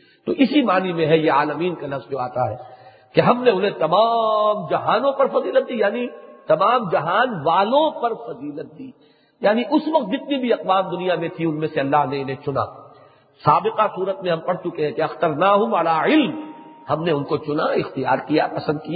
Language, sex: English, male